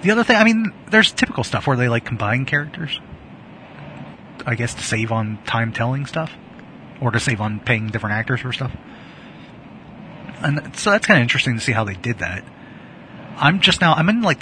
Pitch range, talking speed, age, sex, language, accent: 115-160 Hz, 195 wpm, 30-49, male, English, American